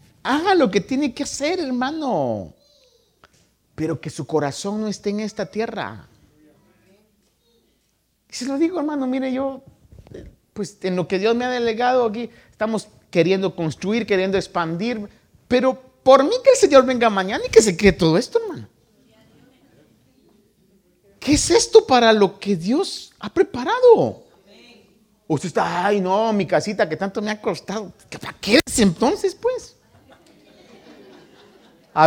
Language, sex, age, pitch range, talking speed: Spanish, male, 50-69, 180-250 Hz, 145 wpm